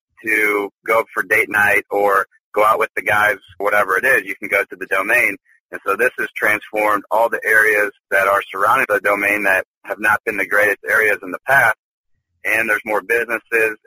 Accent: American